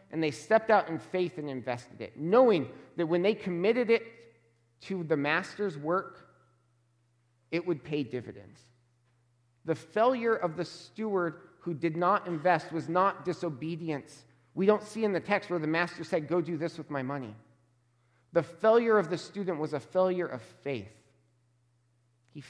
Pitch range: 120-170 Hz